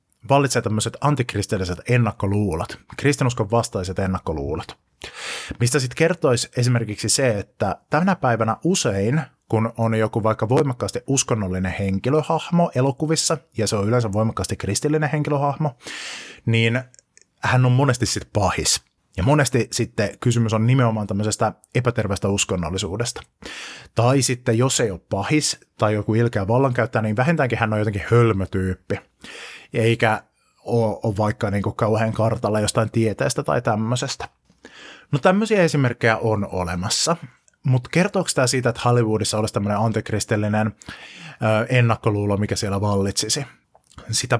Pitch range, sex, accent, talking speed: 105-130 Hz, male, native, 125 wpm